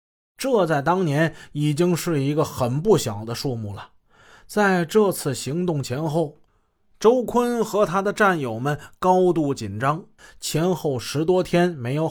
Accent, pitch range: native, 115-180 Hz